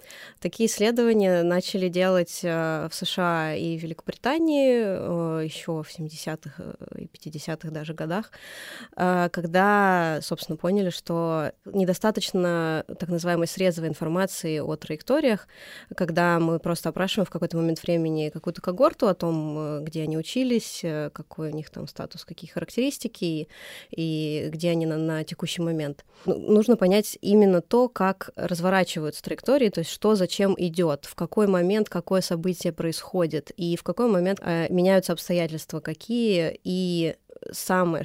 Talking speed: 130 wpm